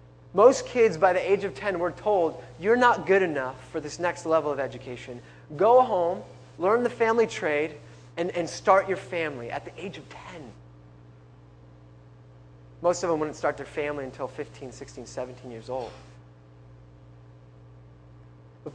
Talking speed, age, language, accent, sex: 155 wpm, 20-39, English, American, male